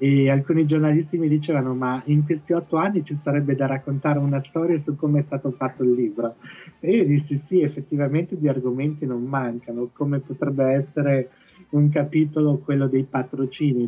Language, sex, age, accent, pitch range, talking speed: Italian, male, 30-49, native, 125-150 Hz, 175 wpm